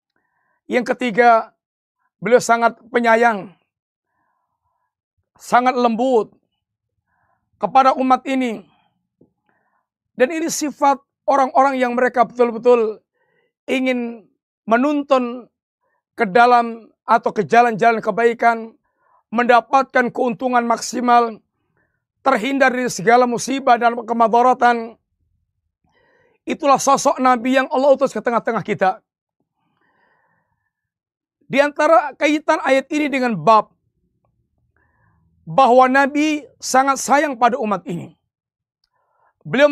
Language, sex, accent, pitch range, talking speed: Indonesian, male, native, 235-280 Hz, 90 wpm